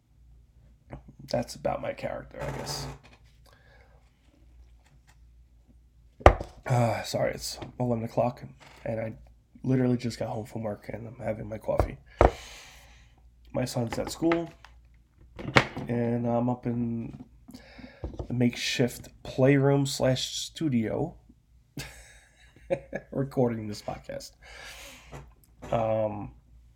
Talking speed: 90 wpm